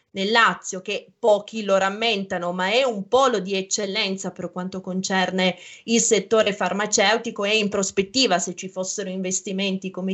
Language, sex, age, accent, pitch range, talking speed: Italian, female, 20-39, native, 190-230 Hz, 155 wpm